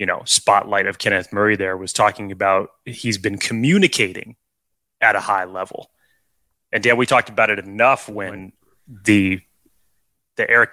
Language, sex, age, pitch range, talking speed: English, male, 20-39, 100-135 Hz, 155 wpm